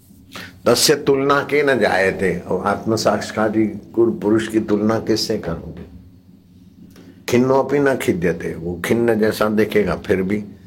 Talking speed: 135 wpm